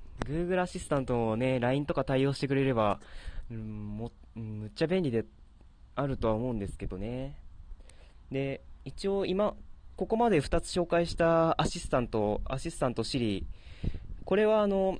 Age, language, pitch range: 20-39, Japanese, 100-160 Hz